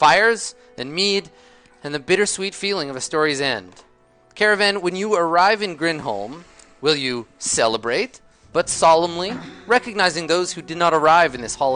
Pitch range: 145-210 Hz